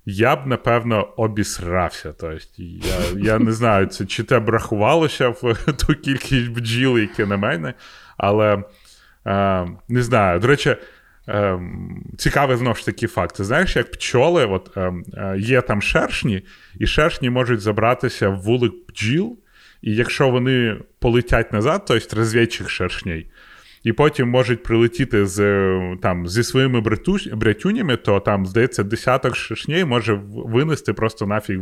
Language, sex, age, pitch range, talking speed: Ukrainian, male, 30-49, 100-125 Hz, 140 wpm